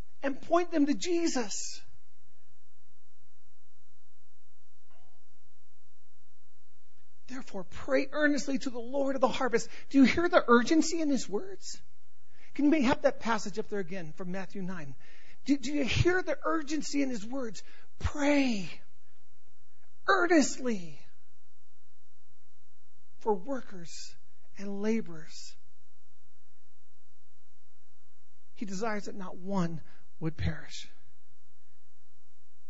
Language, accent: English, American